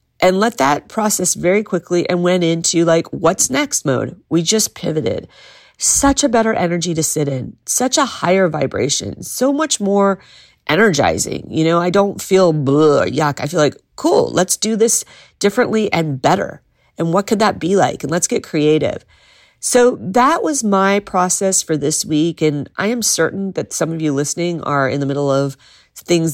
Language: English